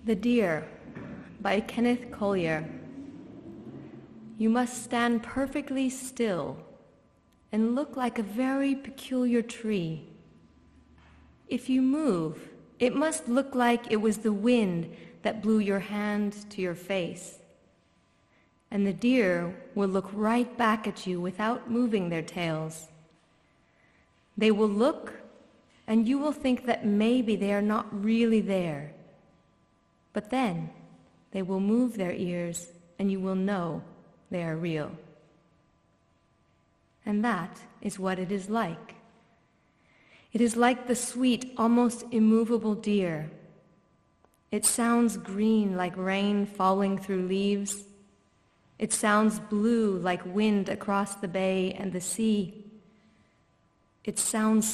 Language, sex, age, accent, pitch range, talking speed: English, female, 30-49, American, 185-230 Hz, 125 wpm